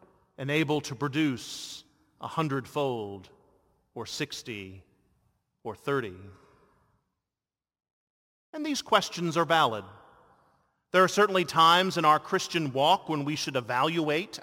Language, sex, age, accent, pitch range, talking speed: English, male, 40-59, American, 130-175 Hz, 110 wpm